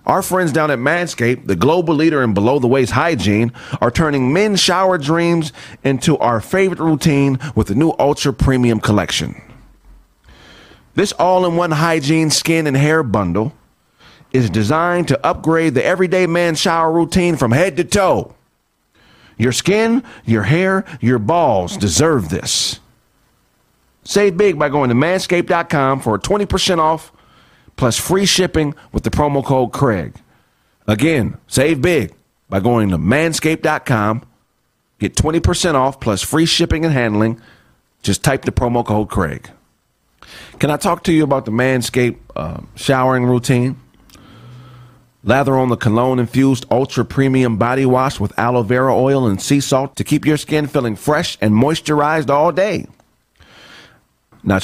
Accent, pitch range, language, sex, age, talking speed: American, 120-165 Hz, English, male, 40-59, 145 wpm